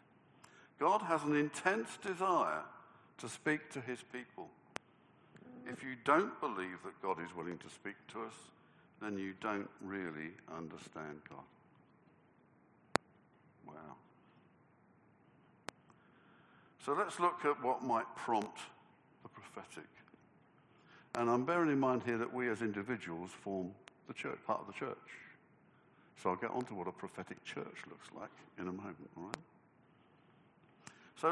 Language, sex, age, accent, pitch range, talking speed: English, male, 60-79, British, 95-125 Hz, 140 wpm